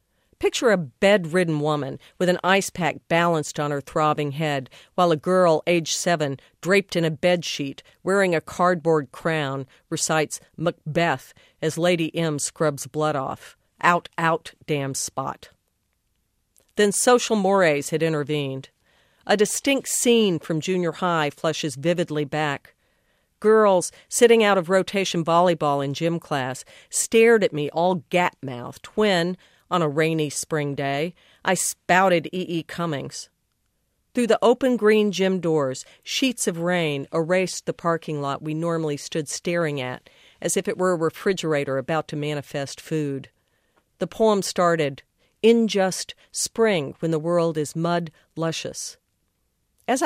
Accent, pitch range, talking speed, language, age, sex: American, 150-185 Hz, 140 wpm, English, 50-69, female